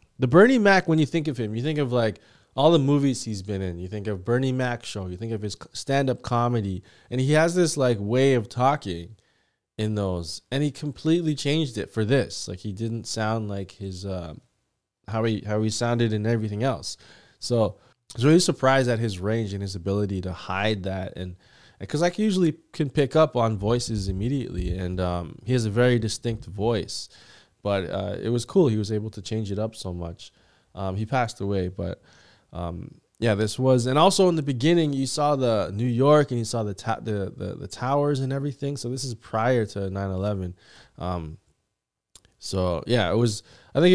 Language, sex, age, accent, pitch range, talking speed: English, male, 20-39, American, 100-135 Hz, 210 wpm